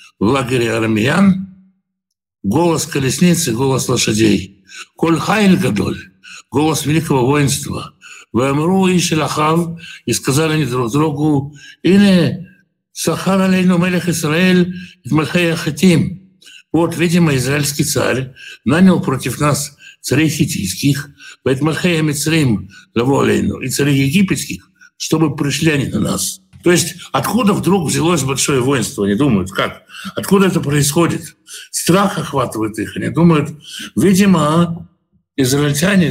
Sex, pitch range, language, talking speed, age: male, 135-175 Hz, Russian, 105 wpm, 60-79